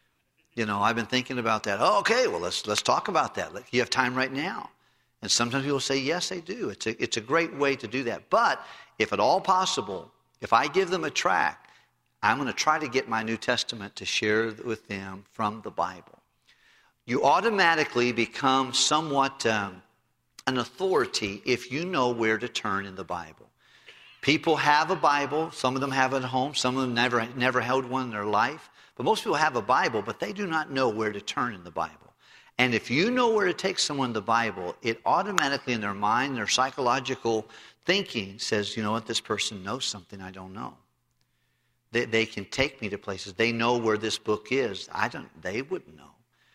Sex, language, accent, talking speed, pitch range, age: male, English, American, 215 wpm, 110-140 Hz, 50-69